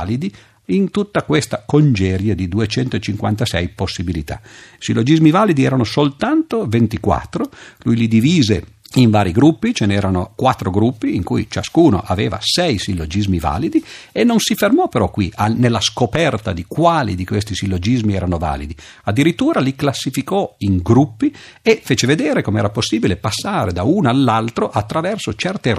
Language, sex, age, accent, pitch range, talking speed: Italian, male, 50-69, native, 90-135 Hz, 145 wpm